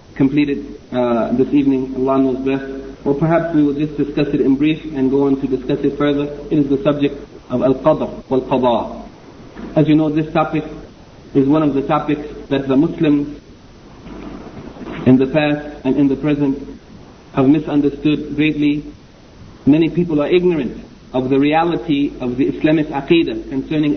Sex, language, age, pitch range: male, English, 50-69, 140-155 Hz